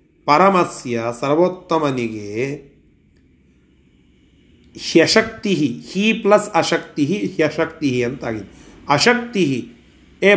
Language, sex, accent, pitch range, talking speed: Kannada, male, native, 120-200 Hz, 60 wpm